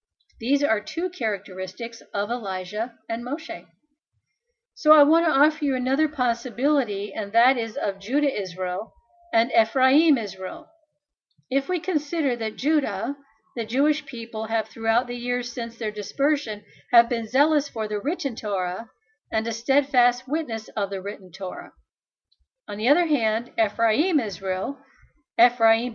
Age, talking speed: 50-69, 145 wpm